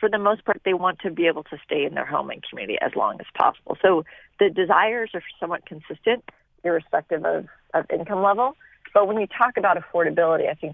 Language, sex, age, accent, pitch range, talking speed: English, female, 40-59, American, 160-205 Hz, 220 wpm